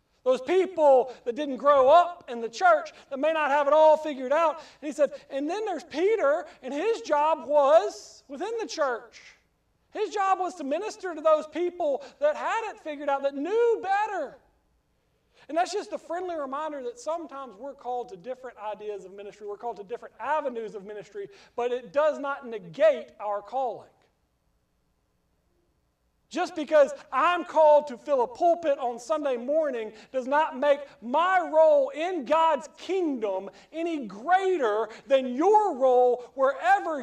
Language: English